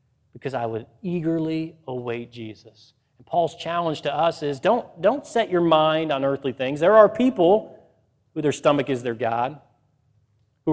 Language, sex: English, male